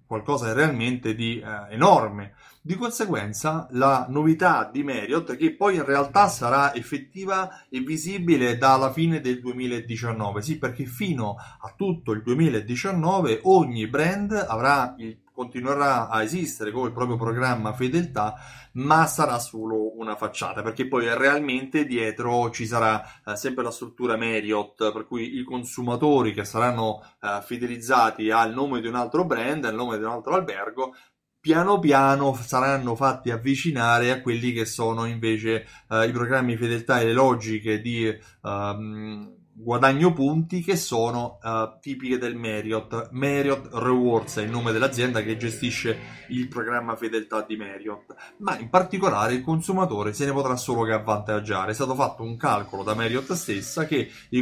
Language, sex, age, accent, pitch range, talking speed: Italian, male, 30-49, native, 110-145 Hz, 155 wpm